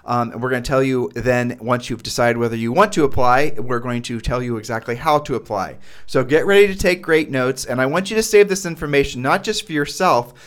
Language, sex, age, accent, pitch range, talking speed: English, male, 40-59, American, 125-165 Hz, 250 wpm